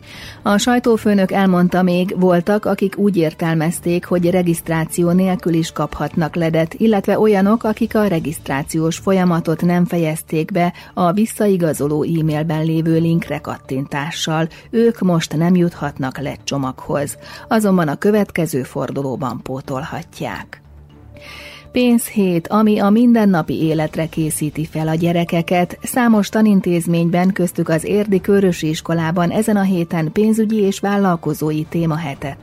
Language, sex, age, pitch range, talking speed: Hungarian, female, 30-49, 155-195 Hz, 115 wpm